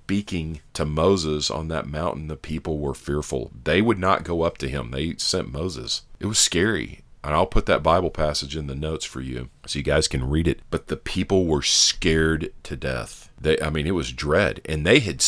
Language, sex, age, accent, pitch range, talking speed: English, male, 40-59, American, 75-95 Hz, 215 wpm